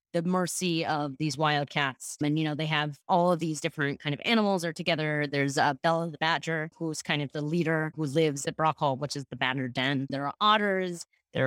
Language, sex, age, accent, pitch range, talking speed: English, female, 30-49, American, 145-175 Hz, 230 wpm